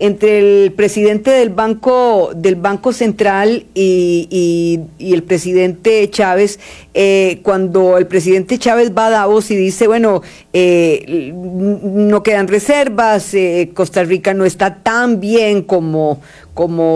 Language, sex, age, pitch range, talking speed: Spanish, female, 50-69, 190-245 Hz, 125 wpm